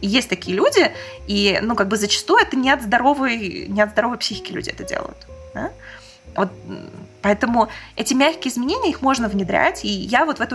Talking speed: 190 wpm